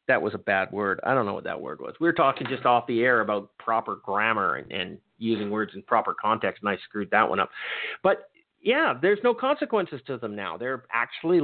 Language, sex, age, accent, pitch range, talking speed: English, male, 50-69, American, 115-155 Hz, 235 wpm